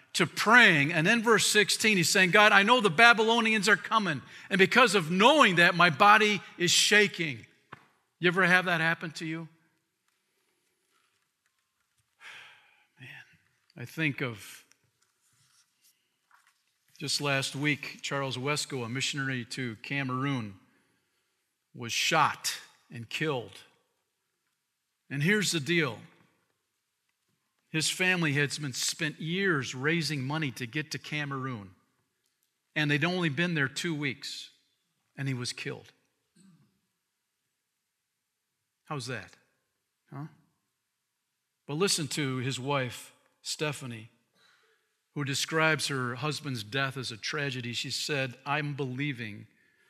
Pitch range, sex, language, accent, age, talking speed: 130-175 Hz, male, English, American, 50-69, 115 wpm